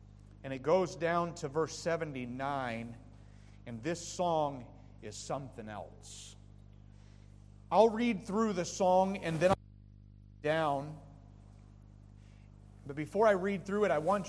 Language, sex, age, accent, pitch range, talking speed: English, male, 40-59, American, 100-160 Hz, 130 wpm